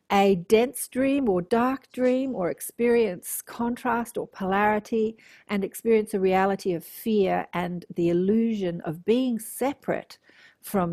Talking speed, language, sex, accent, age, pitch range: 130 wpm, English, female, Australian, 50-69, 170-210 Hz